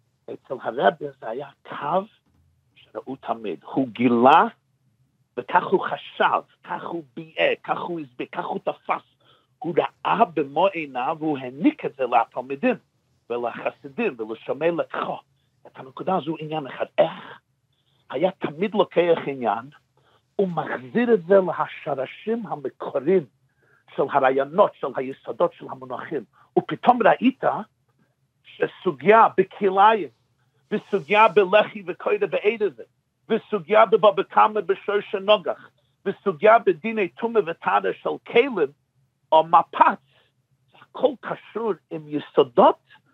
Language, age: Hebrew, 50-69